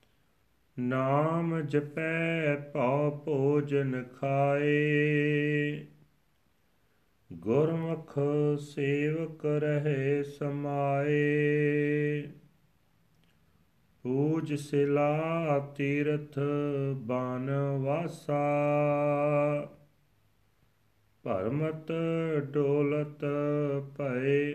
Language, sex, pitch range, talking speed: Punjabi, male, 140-150 Hz, 40 wpm